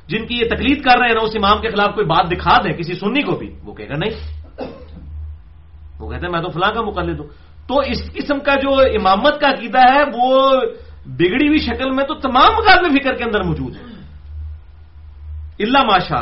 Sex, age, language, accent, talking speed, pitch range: male, 40-59, English, Indian, 185 wpm, 140-230 Hz